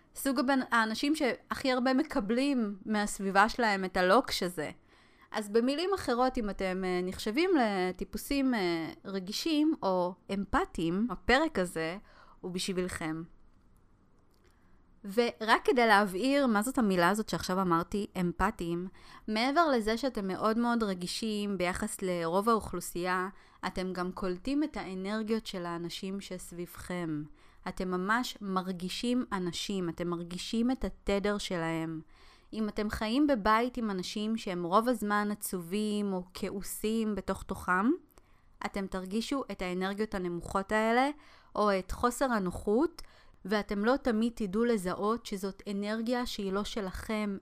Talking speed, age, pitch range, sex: 120 wpm, 20-39, 185-225 Hz, female